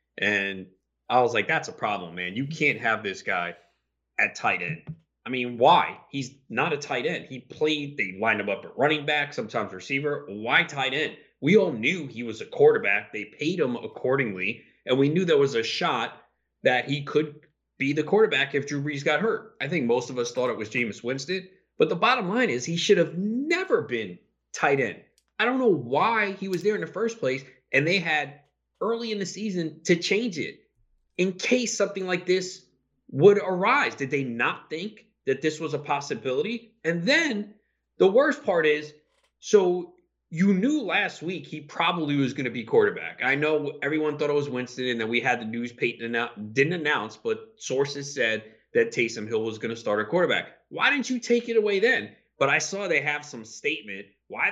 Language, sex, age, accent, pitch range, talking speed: English, male, 30-49, American, 130-200 Hz, 205 wpm